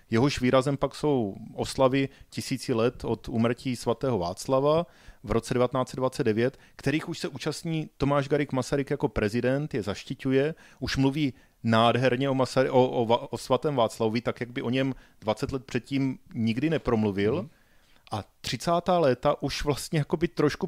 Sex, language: male, Czech